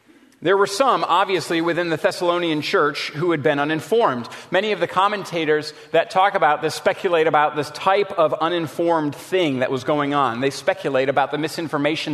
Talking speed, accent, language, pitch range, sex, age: 180 wpm, American, English, 160-200 Hz, male, 40-59